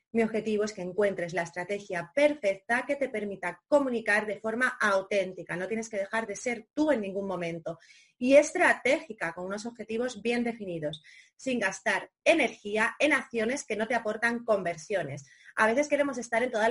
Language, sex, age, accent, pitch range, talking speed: Spanish, female, 30-49, Spanish, 180-235 Hz, 170 wpm